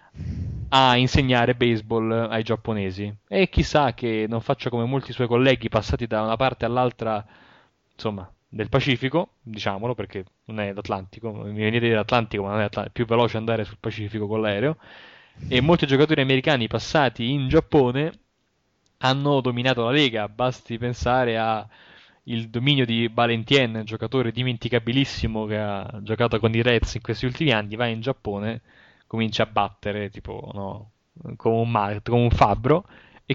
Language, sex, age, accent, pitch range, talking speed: Italian, male, 20-39, native, 110-130 Hz, 155 wpm